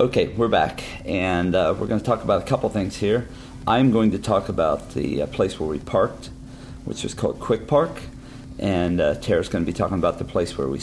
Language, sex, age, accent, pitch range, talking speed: English, male, 40-59, American, 85-115 Hz, 235 wpm